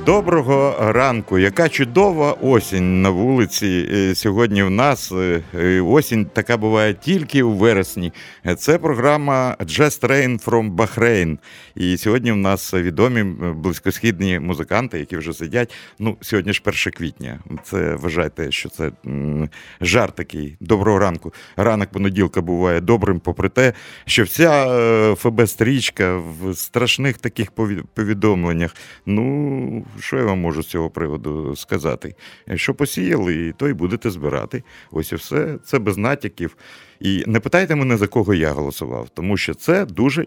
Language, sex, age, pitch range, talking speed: Russian, male, 50-69, 90-120 Hz, 135 wpm